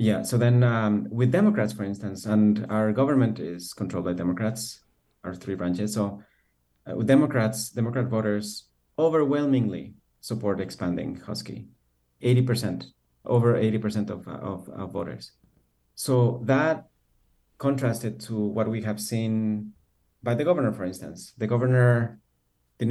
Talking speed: 135 wpm